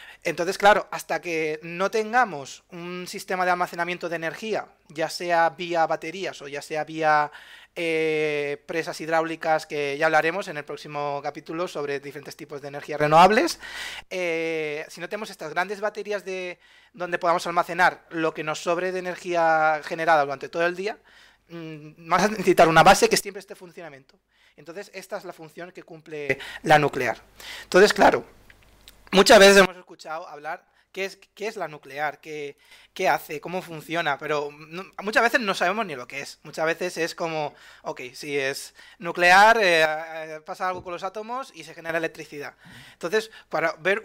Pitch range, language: 150-180 Hz, Spanish